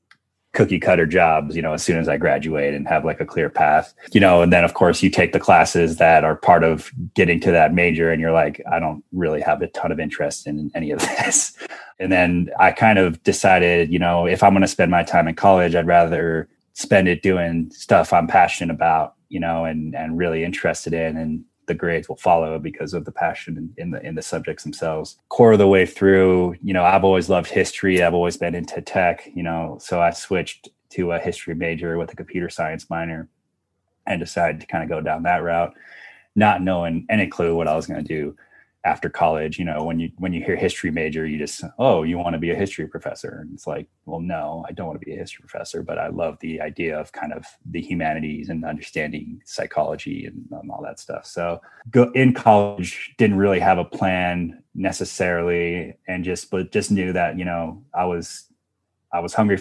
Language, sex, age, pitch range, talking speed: English, male, 20-39, 80-90 Hz, 220 wpm